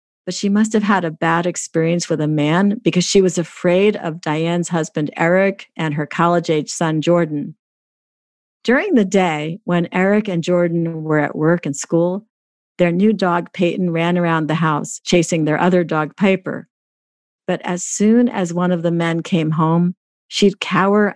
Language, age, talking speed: English, 50-69, 175 wpm